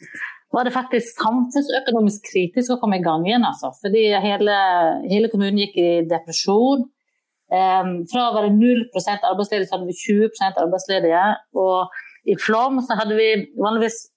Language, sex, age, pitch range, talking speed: English, female, 30-49, 190-240 Hz, 160 wpm